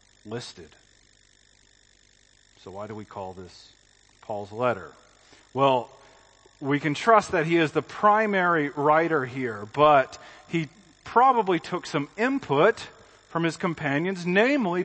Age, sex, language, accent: 40-59, male, English, American